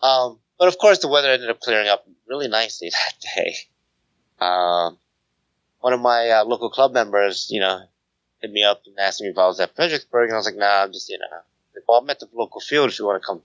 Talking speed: 240 wpm